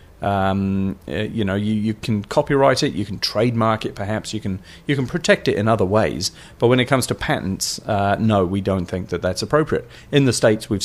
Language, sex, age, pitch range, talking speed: English, male, 40-59, 95-115 Hz, 220 wpm